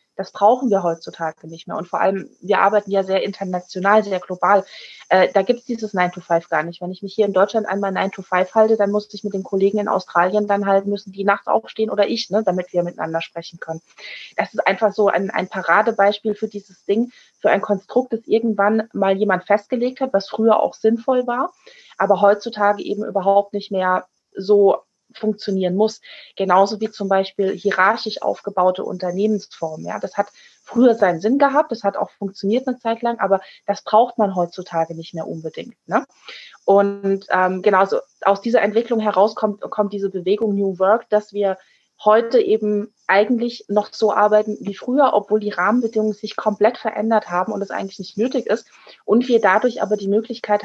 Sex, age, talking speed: female, 20-39, 190 wpm